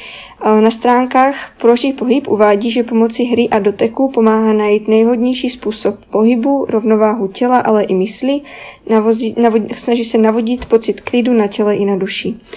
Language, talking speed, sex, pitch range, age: Czech, 155 wpm, female, 210-245 Hz, 20-39